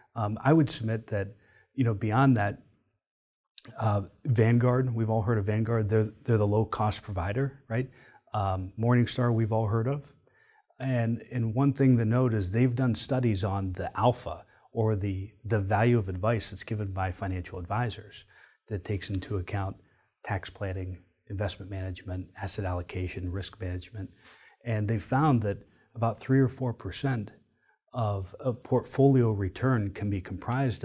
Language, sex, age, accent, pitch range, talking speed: English, male, 40-59, American, 100-125 Hz, 160 wpm